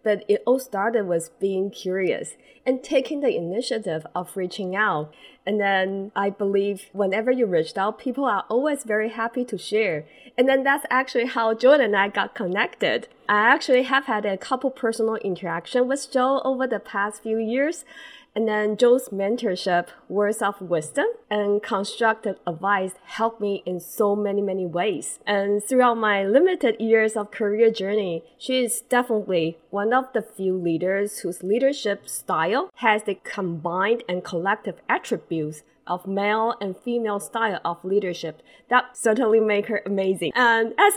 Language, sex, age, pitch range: Chinese, female, 20-39, 190-240 Hz